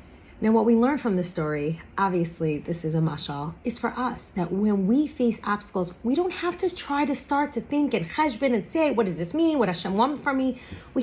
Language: English